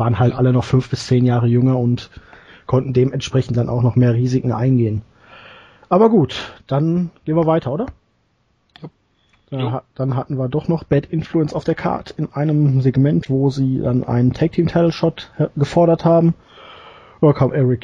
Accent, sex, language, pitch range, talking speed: German, male, German, 125-155 Hz, 175 wpm